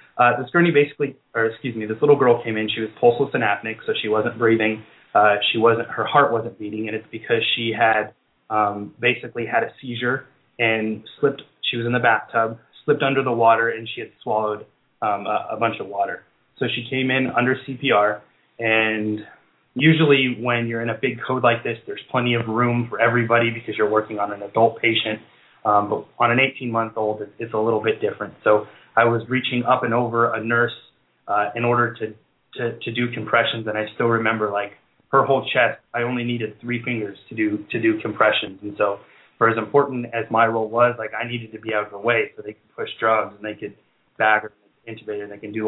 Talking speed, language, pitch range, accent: 220 wpm, English, 110-120 Hz, American